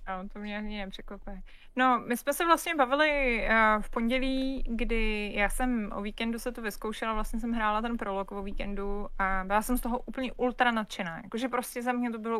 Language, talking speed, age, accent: Czech, 215 wpm, 20-39, native